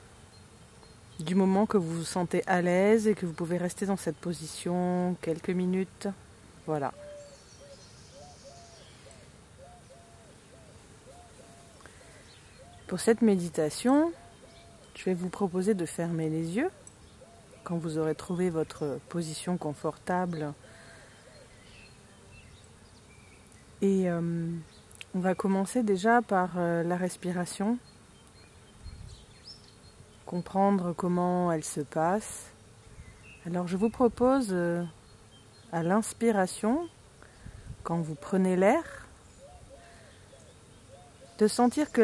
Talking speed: 95 wpm